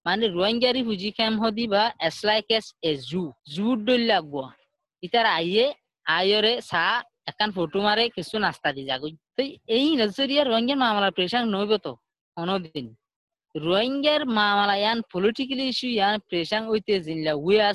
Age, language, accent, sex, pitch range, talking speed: 20-39, English, Indian, female, 170-235 Hz, 135 wpm